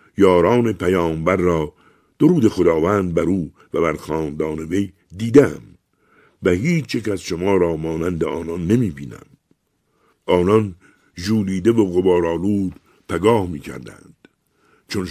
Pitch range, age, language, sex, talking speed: 85-105 Hz, 60-79, Persian, male, 115 wpm